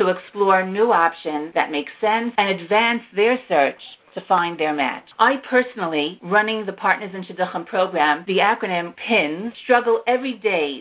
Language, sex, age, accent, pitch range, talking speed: English, female, 50-69, American, 180-235 Hz, 160 wpm